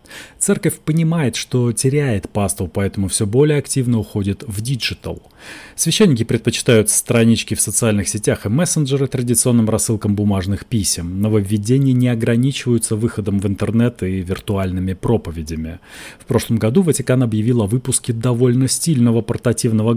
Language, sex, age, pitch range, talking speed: Russian, male, 30-49, 100-130 Hz, 130 wpm